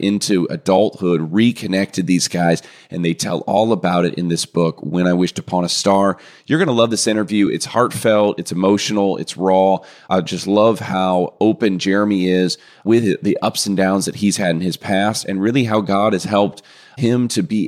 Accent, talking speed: American, 200 wpm